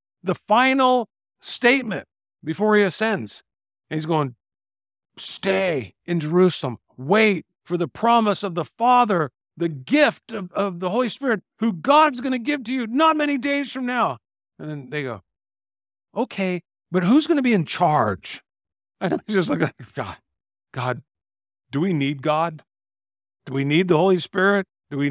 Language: English